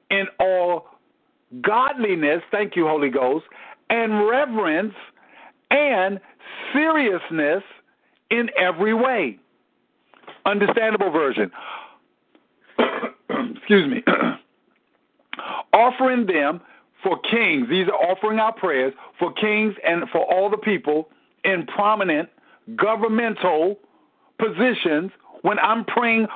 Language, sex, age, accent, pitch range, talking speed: English, male, 50-69, American, 195-255 Hz, 95 wpm